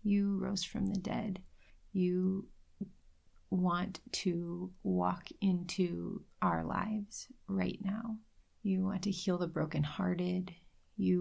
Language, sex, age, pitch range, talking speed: English, female, 30-49, 150-195 Hz, 110 wpm